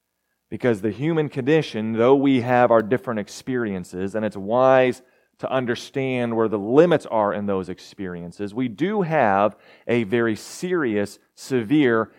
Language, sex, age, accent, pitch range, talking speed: English, male, 30-49, American, 100-150 Hz, 145 wpm